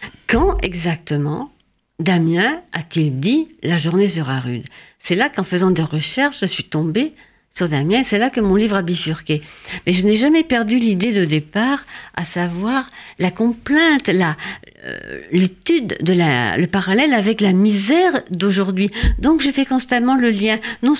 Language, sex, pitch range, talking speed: French, female, 180-255 Hz, 170 wpm